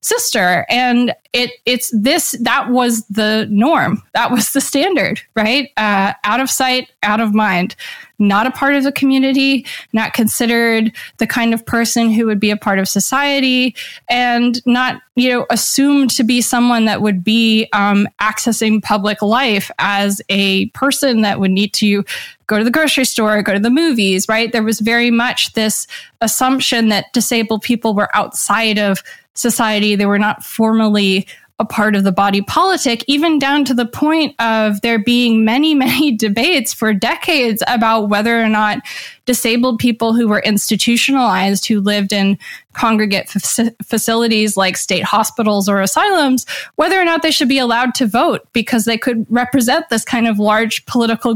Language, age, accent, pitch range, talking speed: English, 20-39, American, 215-260 Hz, 170 wpm